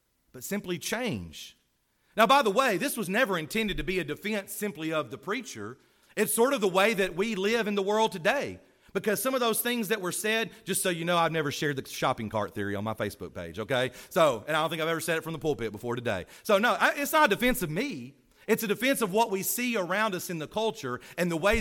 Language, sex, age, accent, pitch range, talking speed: English, male, 40-59, American, 150-220 Hz, 255 wpm